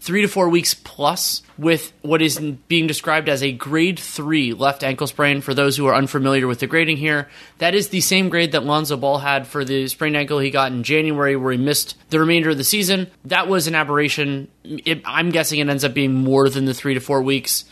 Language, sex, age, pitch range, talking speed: English, male, 20-39, 130-155 Hz, 235 wpm